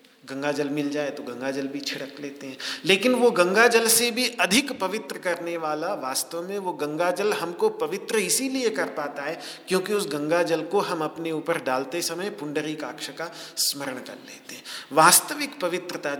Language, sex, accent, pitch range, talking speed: Hindi, male, native, 135-180 Hz, 185 wpm